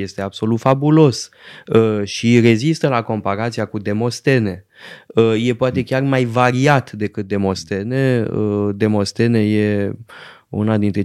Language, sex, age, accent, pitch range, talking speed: Romanian, male, 20-39, native, 105-145 Hz, 110 wpm